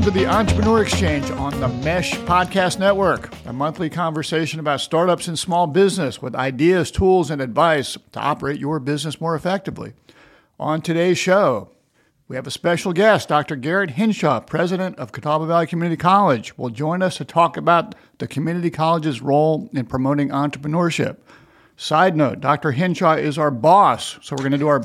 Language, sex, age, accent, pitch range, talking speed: English, male, 50-69, American, 140-175 Hz, 175 wpm